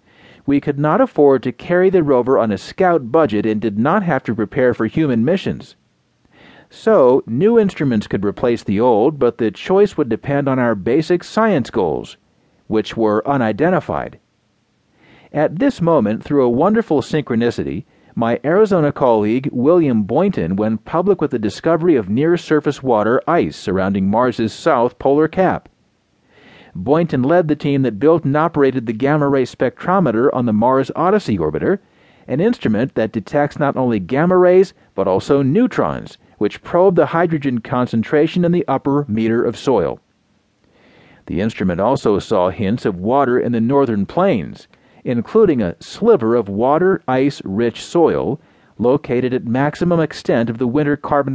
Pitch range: 115-160 Hz